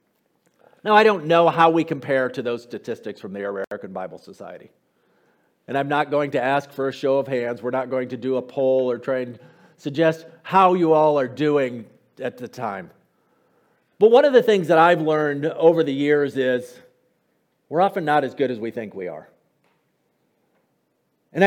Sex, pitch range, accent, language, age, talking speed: male, 145-200 Hz, American, English, 40-59, 190 wpm